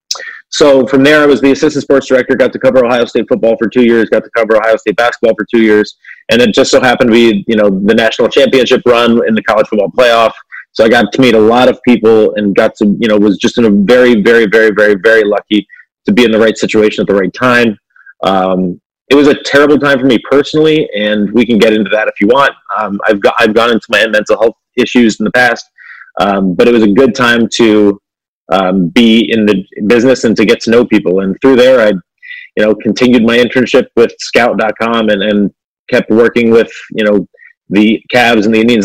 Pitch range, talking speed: 105-125 Hz, 235 wpm